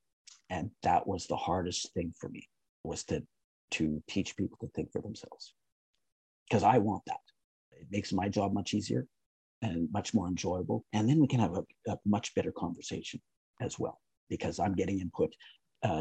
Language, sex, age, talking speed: English, male, 50-69, 180 wpm